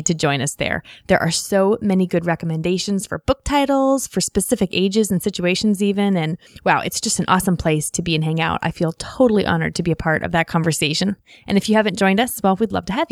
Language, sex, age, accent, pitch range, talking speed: English, female, 20-39, American, 175-225 Hz, 240 wpm